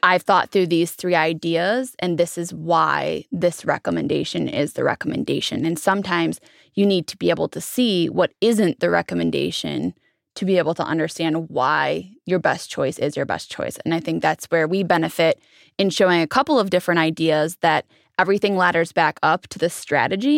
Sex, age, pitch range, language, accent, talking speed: female, 20-39, 160-190 Hz, English, American, 185 wpm